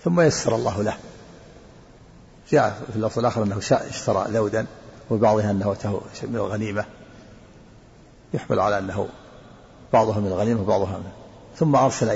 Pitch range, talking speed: 105-130 Hz, 130 wpm